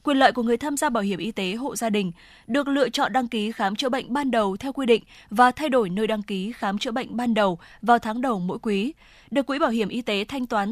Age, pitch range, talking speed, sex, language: 20-39, 205-255 Hz, 280 wpm, female, Vietnamese